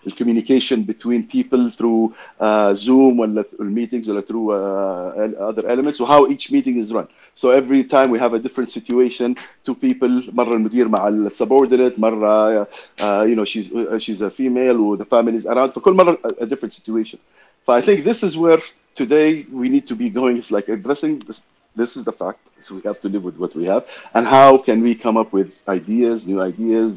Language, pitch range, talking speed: Arabic, 105-125 Hz, 195 wpm